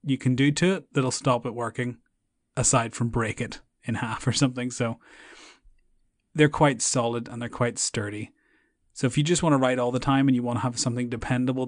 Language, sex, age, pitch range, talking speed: English, male, 30-49, 125-140 Hz, 215 wpm